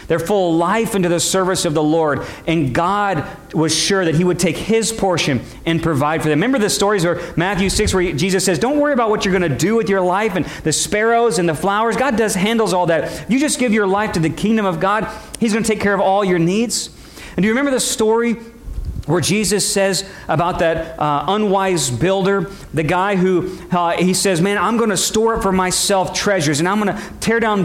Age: 40-59